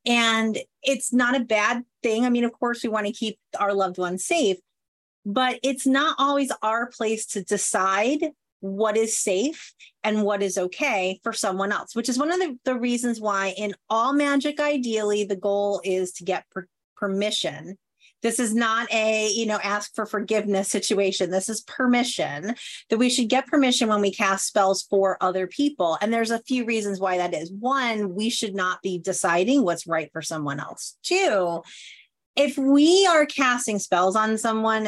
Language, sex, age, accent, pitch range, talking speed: English, female, 30-49, American, 195-245 Hz, 180 wpm